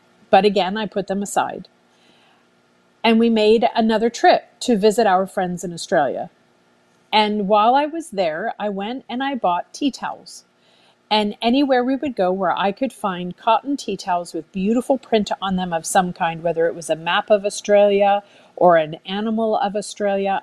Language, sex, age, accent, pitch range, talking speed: English, female, 50-69, American, 180-225 Hz, 180 wpm